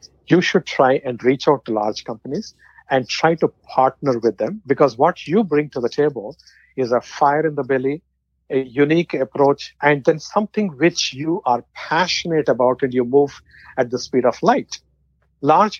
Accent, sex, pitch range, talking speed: Indian, male, 125-155 Hz, 180 wpm